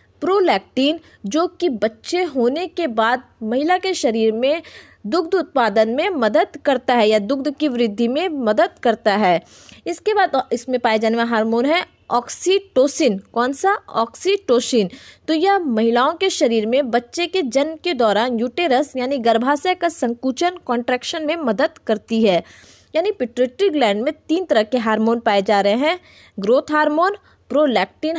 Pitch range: 230-330 Hz